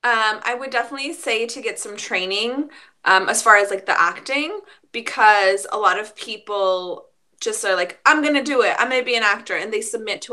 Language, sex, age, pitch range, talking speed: English, female, 20-39, 190-250 Hz, 225 wpm